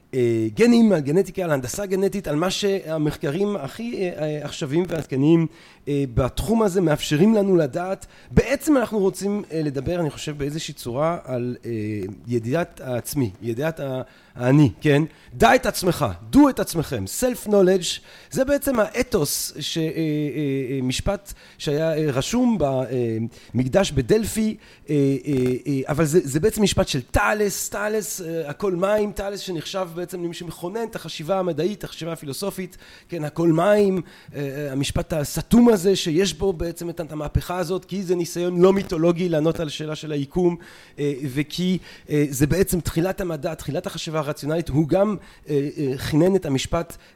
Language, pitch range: Hebrew, 145-190 Hz